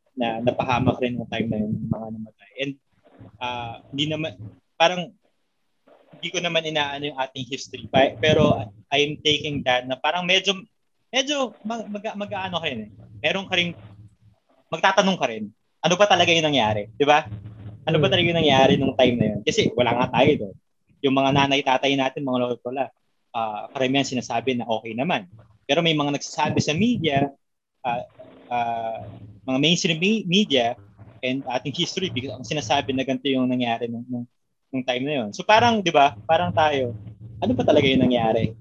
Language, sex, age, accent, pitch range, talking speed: Filipino, male, 20-39, native, 115-155 Hz, 180 wpm